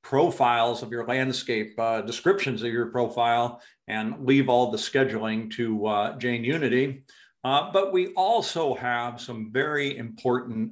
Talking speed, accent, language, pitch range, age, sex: 145 wpm, American, English, 115-140 Hz, 50-69, male